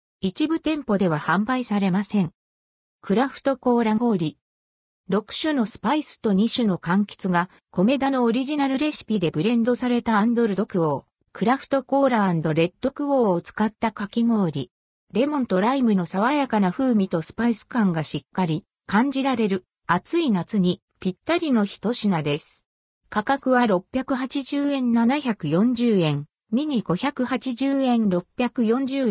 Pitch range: 180-260 Hz